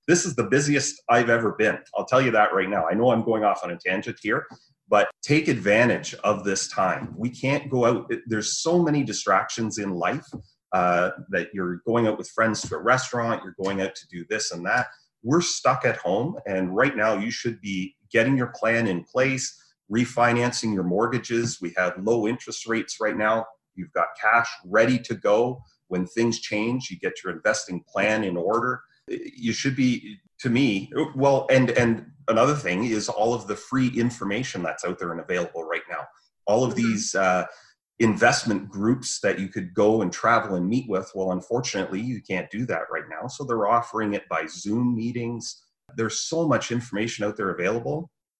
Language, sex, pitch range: English, male, 105-130 Hz